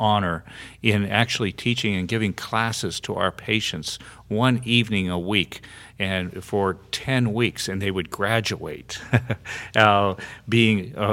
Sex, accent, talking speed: male, American, 135 wpm